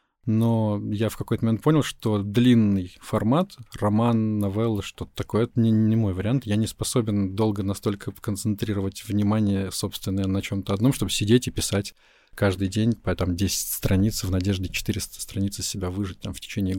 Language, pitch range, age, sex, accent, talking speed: Russian, 100-115 Hz, 20-39, male, native, 175 wpm